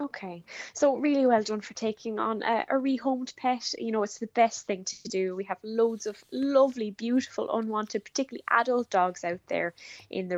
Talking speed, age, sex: 195 wpm, 10-29, female